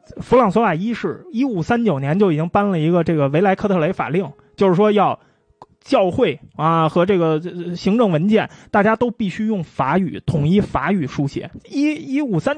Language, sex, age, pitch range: Chinese, male, 20-39, 160-230 Hz